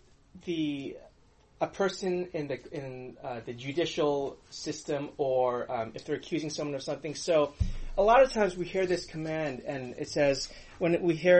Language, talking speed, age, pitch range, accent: English, 175 wpm, 30-49, 130-175 Hz, American